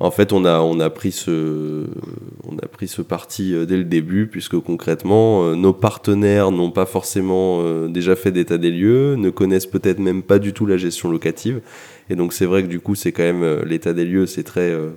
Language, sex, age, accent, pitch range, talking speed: French, male, 20-39, French, 85-100 Hz, 195 wpm